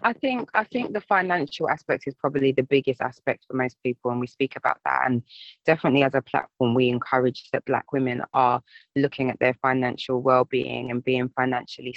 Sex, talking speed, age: female, 195 wpm, 20-39